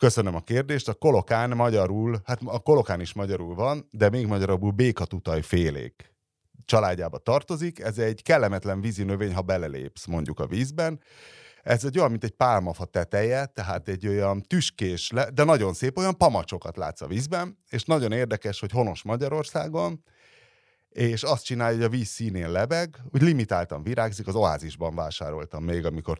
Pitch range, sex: 90-125 Hz, male